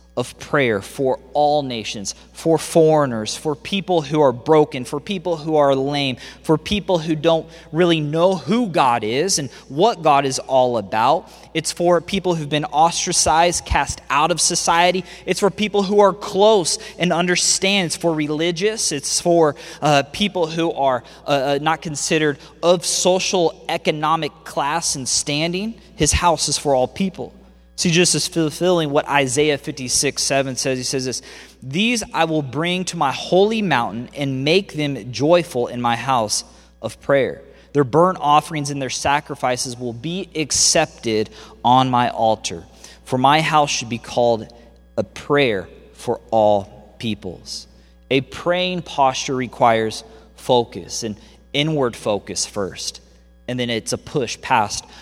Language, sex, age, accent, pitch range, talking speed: English, male, 20-39, American, 125-175 Hz, 155 wpm